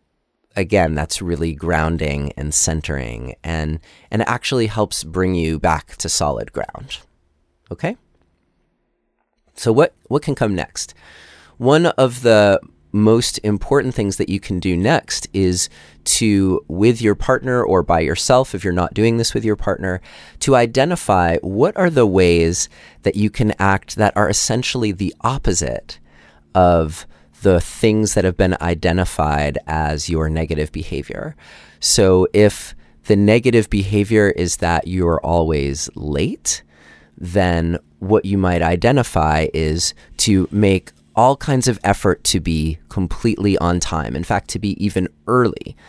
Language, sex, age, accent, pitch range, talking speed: English, male, 30-49, American, 80-105 Hz, 145 wpm